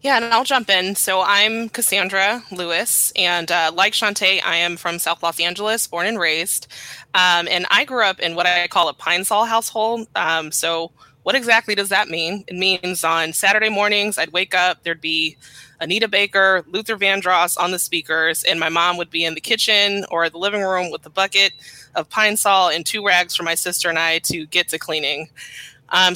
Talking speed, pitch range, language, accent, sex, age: 205 wpm, 165-200 Hz, English, American, female, 20-39